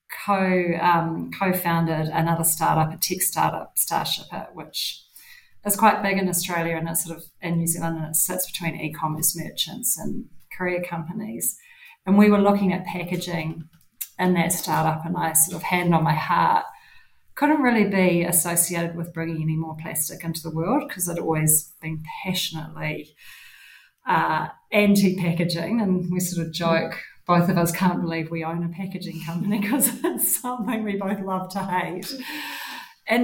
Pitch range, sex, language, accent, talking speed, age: 165-195 Hz, female, English, Australian, 165 wpm, 30-49